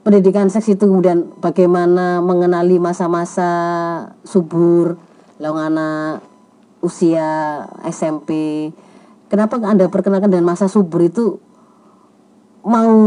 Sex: female